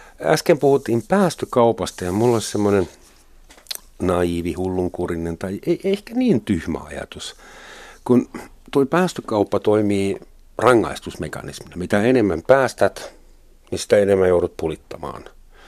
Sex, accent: male, native